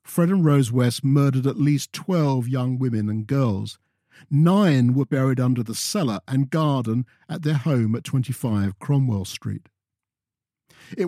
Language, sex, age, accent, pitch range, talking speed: English, male, 50-69, British, 110-150 Hz, 150 wpm